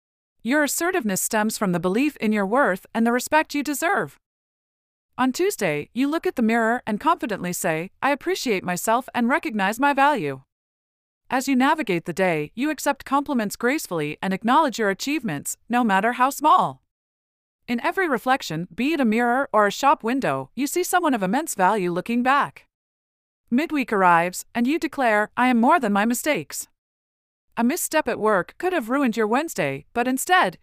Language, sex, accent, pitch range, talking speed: English, female, American, 185-280 Hz, 175 wpm